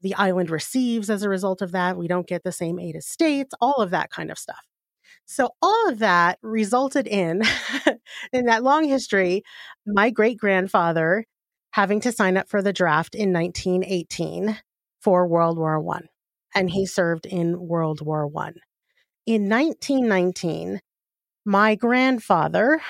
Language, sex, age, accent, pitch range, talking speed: English, female, 30-49, American, 180-230 Hz, 155 wpm